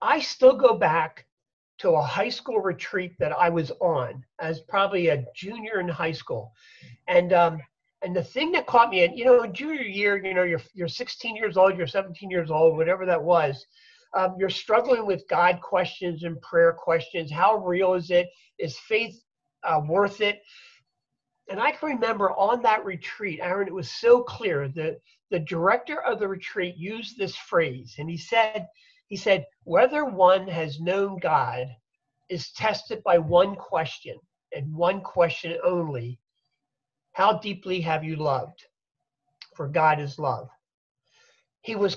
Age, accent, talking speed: 50-69, American, 165 wpm